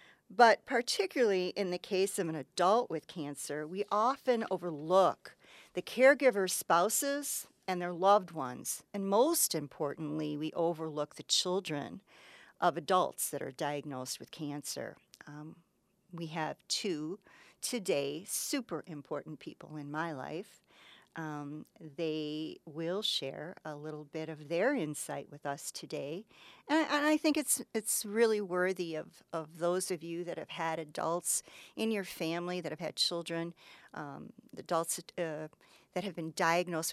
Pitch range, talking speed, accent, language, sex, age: 155-215 Hz, 150 wpm, American, English, female, 50-69